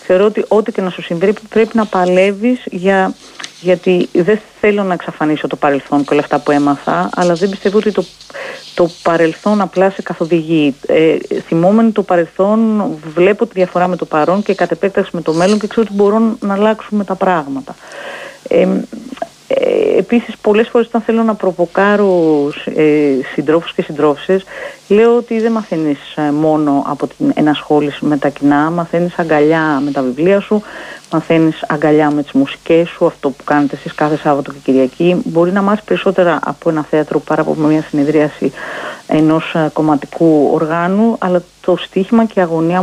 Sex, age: female, 40-59